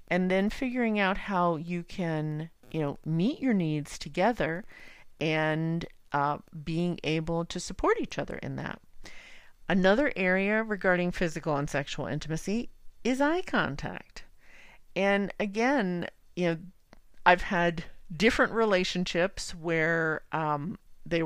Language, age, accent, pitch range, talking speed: English, 40-59, American, 155-195 Hz, 125 wpm